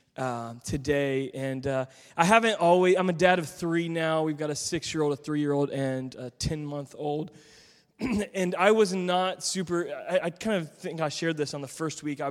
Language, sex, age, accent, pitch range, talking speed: English, male, 20-39, American, 150-185 Hz, 195 wpm